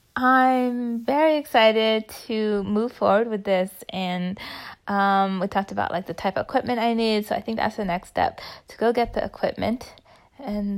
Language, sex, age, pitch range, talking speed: English, female, 20-39, 195-235 Hz, 185 wpm